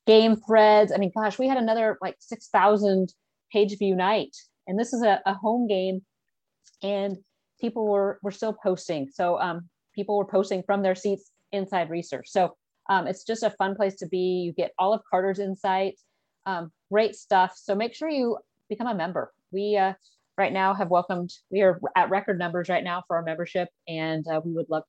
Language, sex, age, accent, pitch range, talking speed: English, female, 30-49, American, 180-210 Hz, 195 wpm